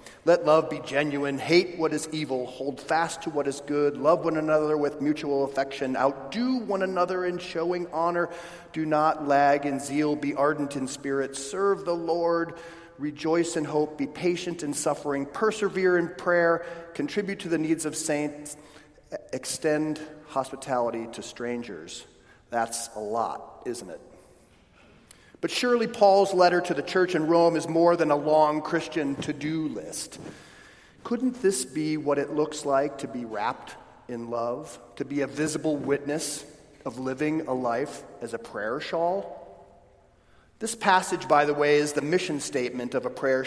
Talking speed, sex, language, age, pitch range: 160 wpm, male, English, 40-59, 135-170 Hz